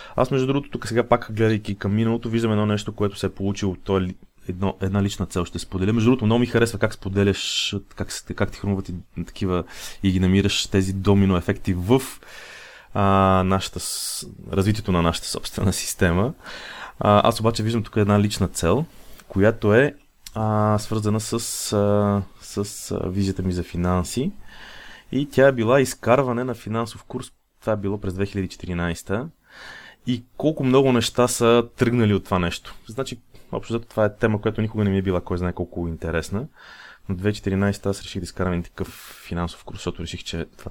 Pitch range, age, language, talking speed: 90-110 Hz, 20-39, Bulgarian, 170 wpm